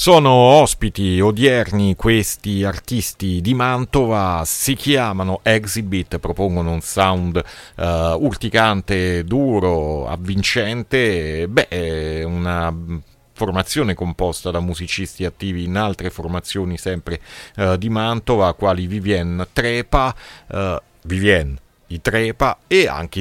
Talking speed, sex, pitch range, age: 105 wpm, male, 85-110 Hz, 40-59